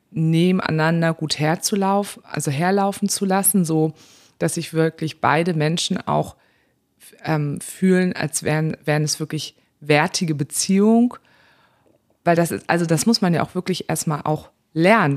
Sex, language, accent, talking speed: female, German, German, 140 wpm